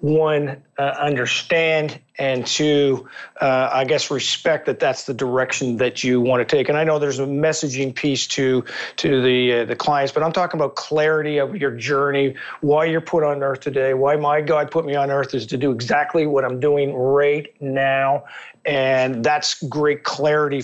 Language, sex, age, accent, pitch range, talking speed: English, male, 40-59, American, 135-170 Hz, 190 wpm